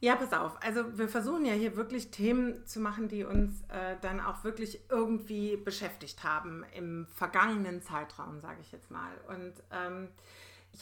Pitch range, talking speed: 190-235 Hz, 170 wpm